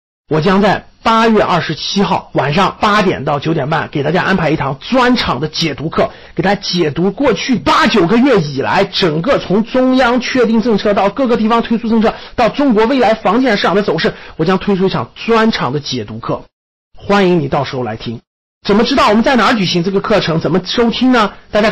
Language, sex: Chinese, male